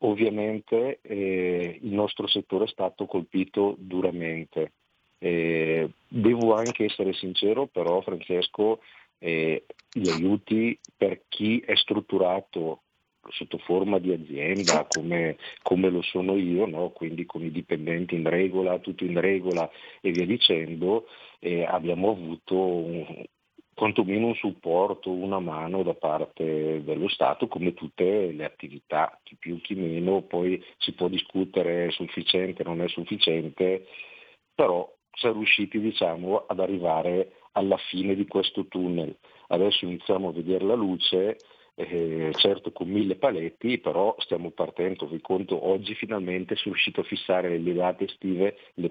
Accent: native